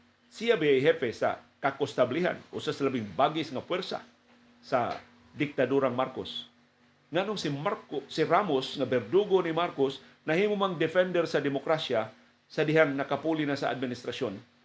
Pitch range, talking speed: 125-160 Hz, 130 wpm